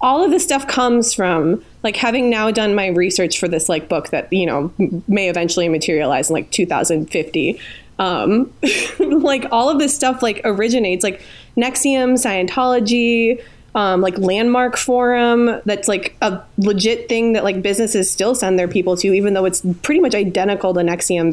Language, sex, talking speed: English, female, 170 wpm